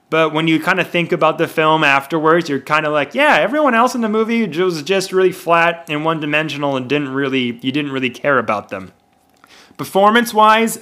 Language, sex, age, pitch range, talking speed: English, male, 30-49, 125-160 Hz, 200 wpm